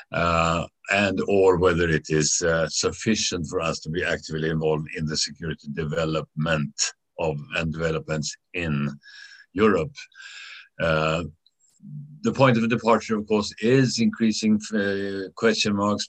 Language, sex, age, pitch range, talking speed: English, male, 60-79, 80-105 Hz, 125 wpm